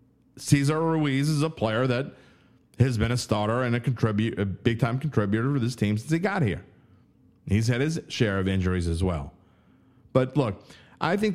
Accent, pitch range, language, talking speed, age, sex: American, 100-125 Hz, English, 185 wpm, 30-49, male